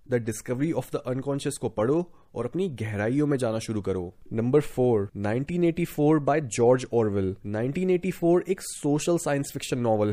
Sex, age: male, 20-39